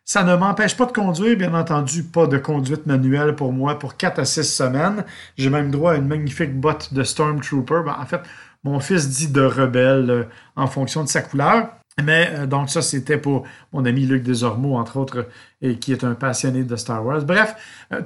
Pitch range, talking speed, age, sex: 140-175 Hz, 215 wpm, 40-59, male